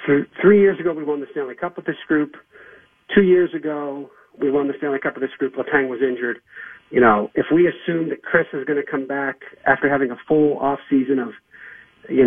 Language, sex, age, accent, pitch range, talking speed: English, male, 40-59, American, 130-155 Hz, 220 wpm